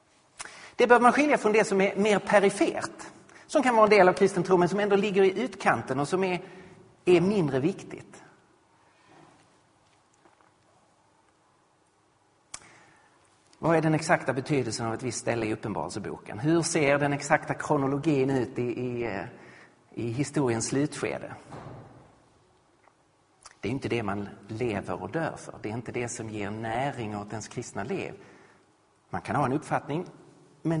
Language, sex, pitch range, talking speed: Swedish, male, 125-185 Hz, 150 wpm